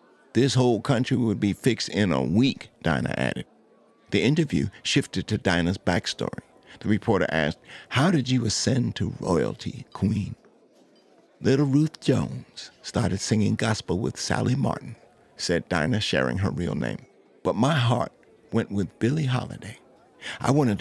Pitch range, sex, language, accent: 100-130 Hz, male, English, American